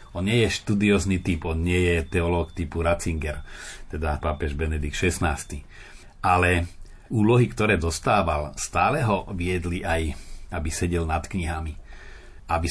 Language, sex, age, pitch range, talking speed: Slovak, male, 40-59, 80-100 Hz, 130 wpm